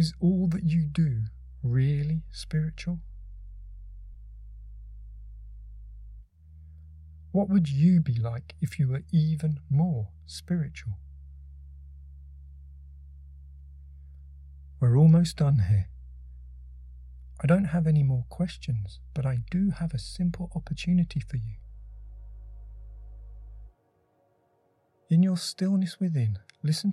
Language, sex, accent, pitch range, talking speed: English, male, British, 95-155 Hz, 95 wpm